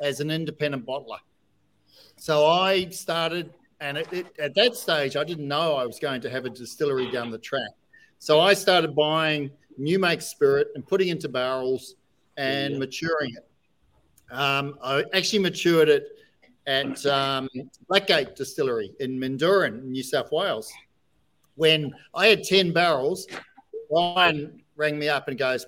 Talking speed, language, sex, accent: 145 wpm, English, male, Australian